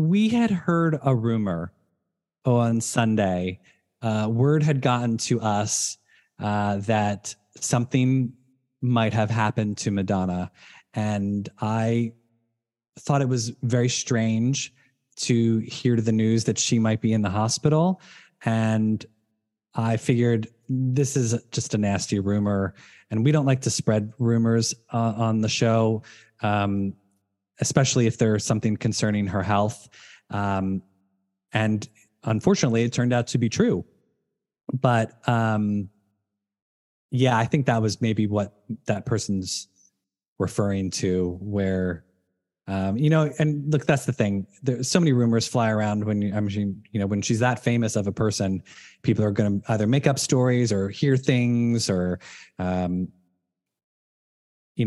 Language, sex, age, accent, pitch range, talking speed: English, male, 20-39, American, 100-125 Hz, 140 wpm